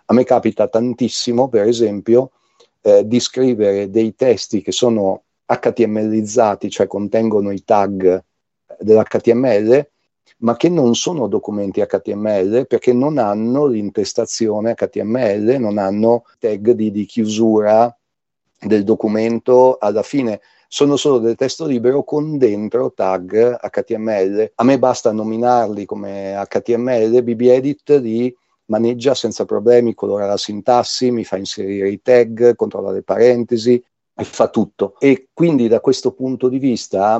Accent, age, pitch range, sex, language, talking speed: native, 40-59, 105-125 Hz, male, Italian, 130 wpm